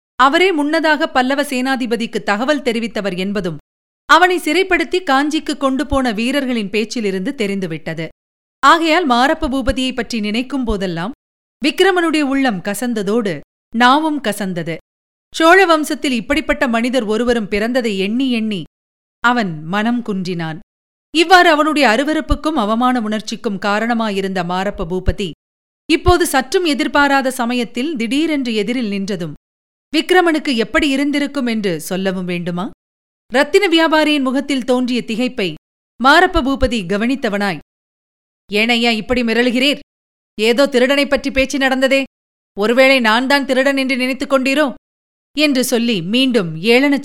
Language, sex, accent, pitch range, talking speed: Tamil, female, native, 205-285 Hz, 105 wpm